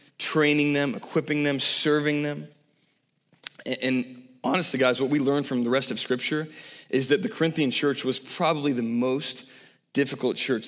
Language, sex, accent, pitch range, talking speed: English, male, American, 125-150 Hz, 165 wpm